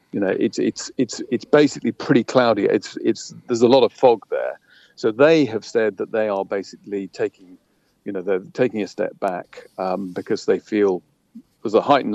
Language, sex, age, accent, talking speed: English, male, 50-69, British, 200 wpm